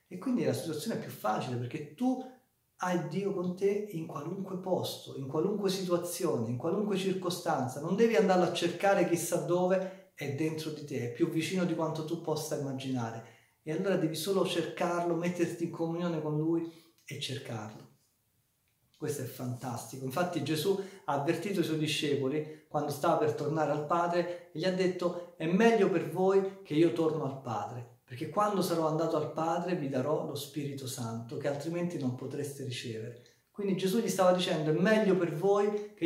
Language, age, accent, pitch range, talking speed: Italian, 40-59, native, 140-180 Hz, 180 wpm